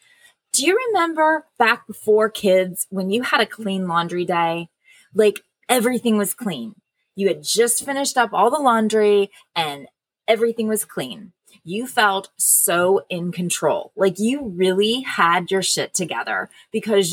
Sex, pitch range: female, 190-265 Hz